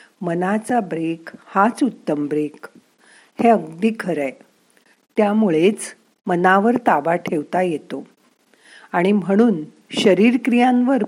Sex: female